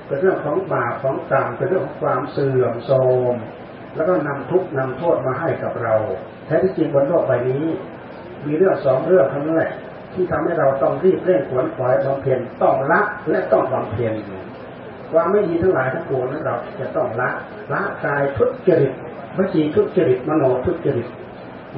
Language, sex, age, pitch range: Thai, male, 40-59, 125-180 Hz